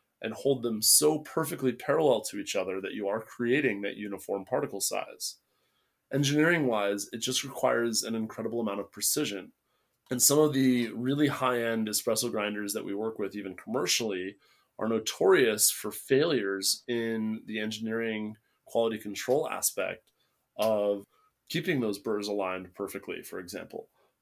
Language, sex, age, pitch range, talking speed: English, male, 20-39, 105-130 Hz, 145 wpm